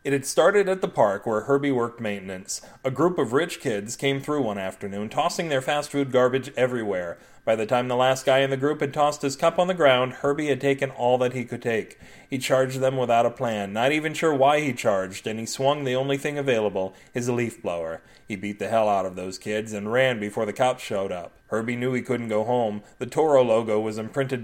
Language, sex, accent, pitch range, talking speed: English, male, American, 110-145 Hz, 240 wpm